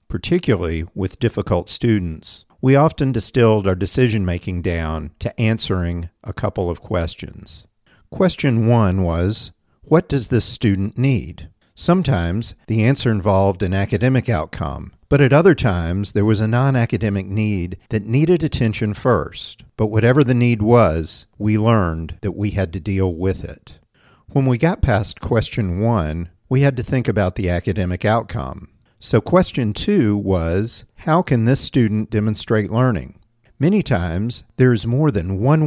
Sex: male